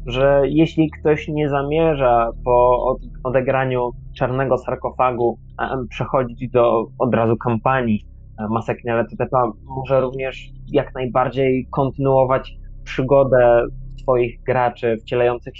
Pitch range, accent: 115-140 Hz, native